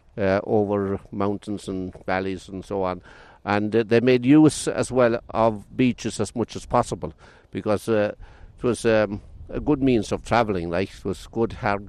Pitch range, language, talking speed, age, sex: 100-125 Hz, English, 180 wpm, 60-79, male